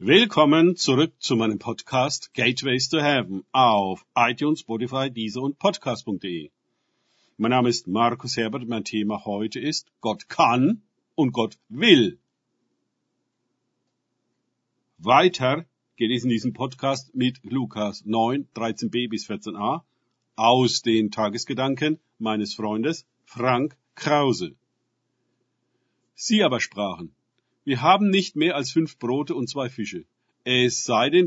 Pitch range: 115-140 Hz